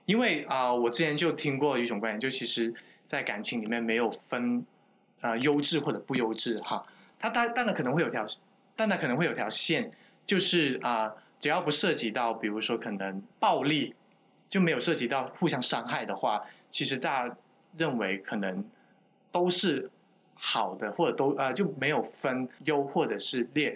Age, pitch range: 20-39, 135-220 Hz